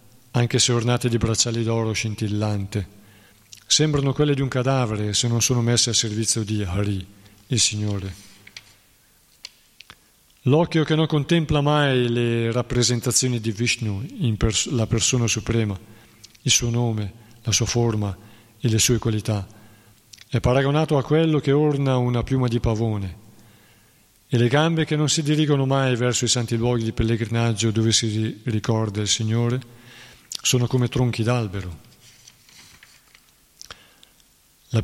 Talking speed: 135 wpm